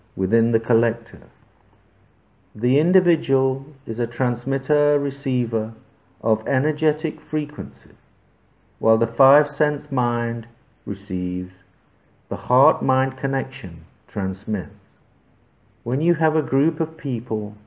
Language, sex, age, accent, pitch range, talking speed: English, male, 50-69, British, 105-140 Hz, 90 wpm